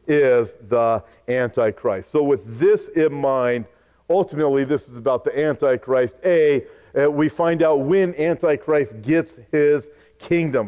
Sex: male